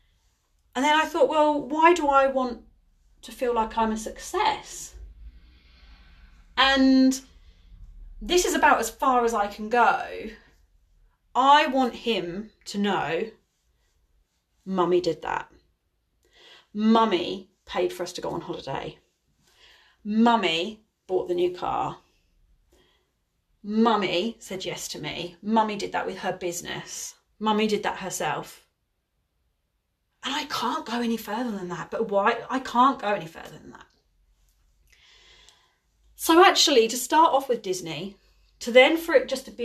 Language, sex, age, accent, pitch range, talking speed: English, female, 30-49, British, 180-260 Hz, 140 wpm